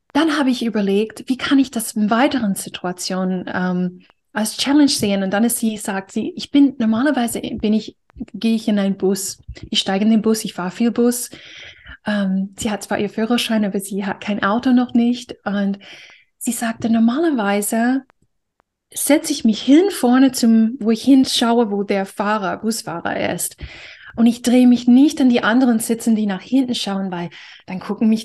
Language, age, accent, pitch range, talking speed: German, 20-39, German, 200-250 Hz, 185 wpm